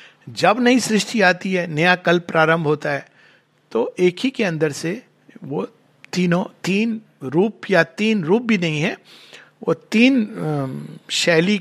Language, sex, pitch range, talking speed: Hindi, male, 160-215 Hz, 150 wpm